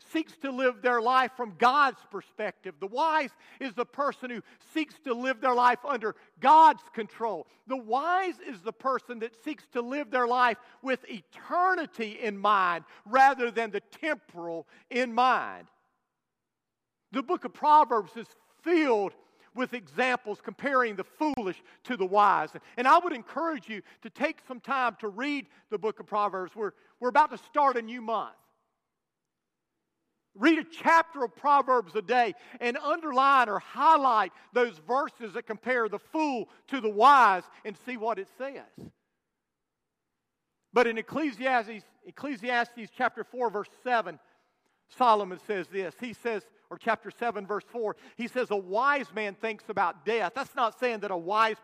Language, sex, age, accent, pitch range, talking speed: English, male, 50-69, American, 215-265 Hz, 160 wpm